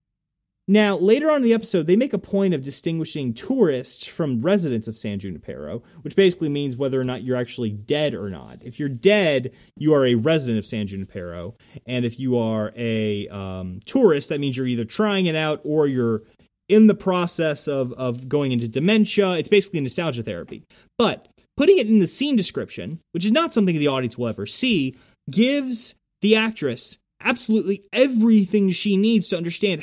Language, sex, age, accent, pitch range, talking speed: English, male, 30-49, American, 130-200 Hz, 185 wpm